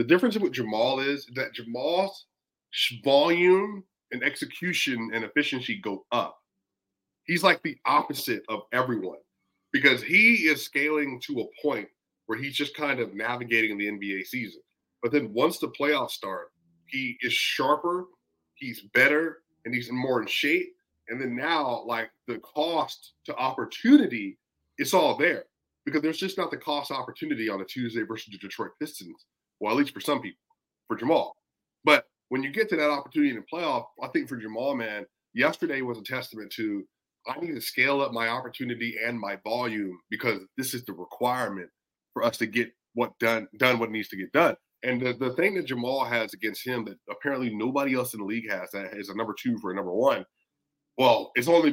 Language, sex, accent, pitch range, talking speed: English, male, American, 115-150 Hz, 190 wpm